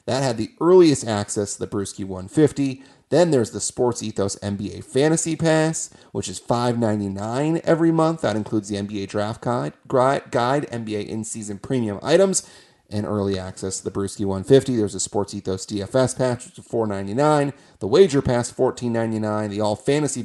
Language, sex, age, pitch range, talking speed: English, male, 30-49, 105-135 Hz, 165 wpm